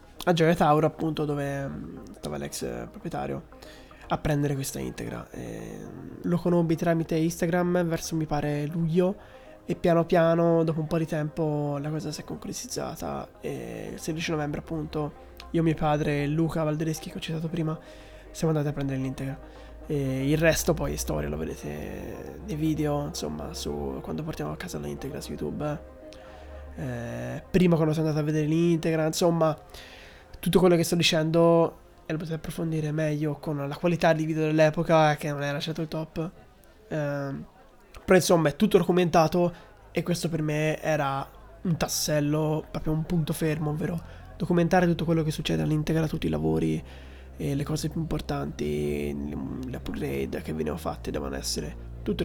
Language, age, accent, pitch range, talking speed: Italian, 20-39, native, 135-170 Hz, 165 wpm